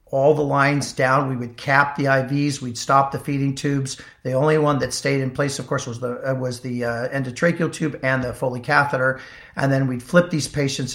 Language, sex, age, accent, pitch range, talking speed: English, male, 50-69, American, 130-145 Hz, 220 wpm